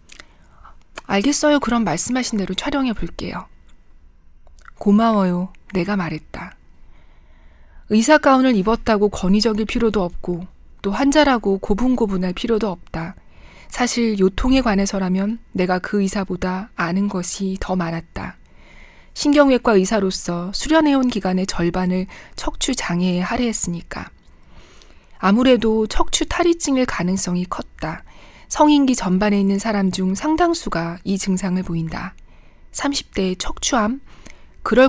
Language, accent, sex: Korean, native, female